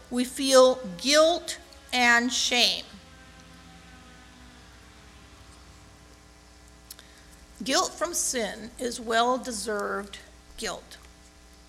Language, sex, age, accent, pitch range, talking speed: English, female, 50-69, American, 190-260 Hz, 55 wpm